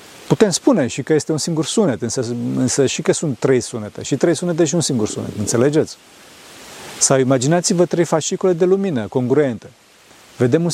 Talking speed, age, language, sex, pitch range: 180 wpm, 40-59, Romanian, male, 130-170 Hz